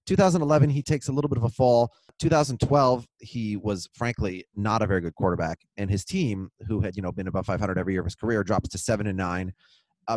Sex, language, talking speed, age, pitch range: male, English, 230 wpm, 30-49, 105-140 Hz